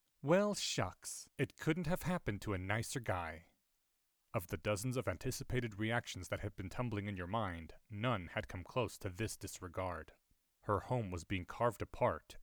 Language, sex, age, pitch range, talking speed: English, male, 30-49, 100-145 Hz, 175 wpm